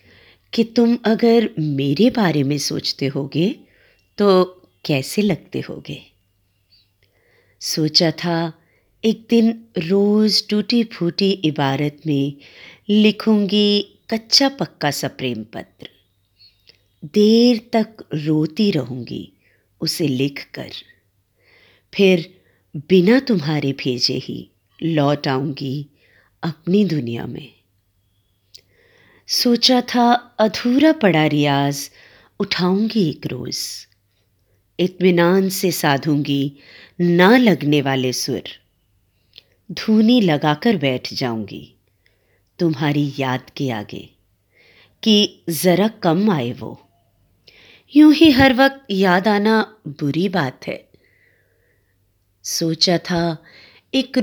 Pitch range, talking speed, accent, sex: 125-205 Hz, 90 wpm, native, female